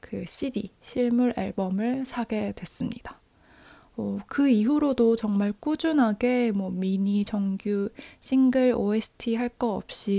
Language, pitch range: Korean, 200-250 Hz